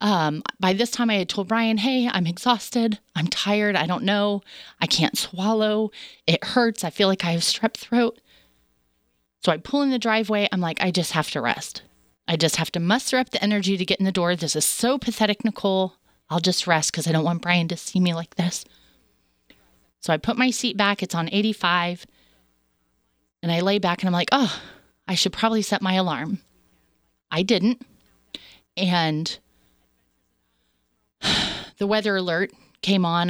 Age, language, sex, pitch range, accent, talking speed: 30-49, English, female, 155-210 Hz, American, 185 wpm